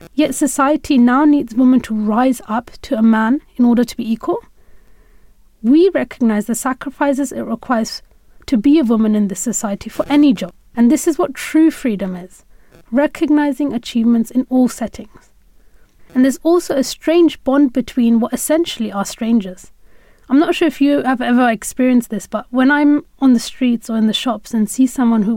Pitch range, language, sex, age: 230-280 Hz, English, female, 30-49